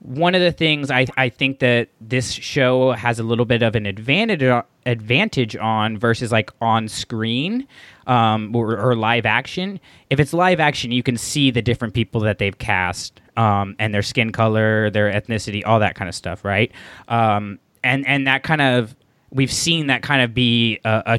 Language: English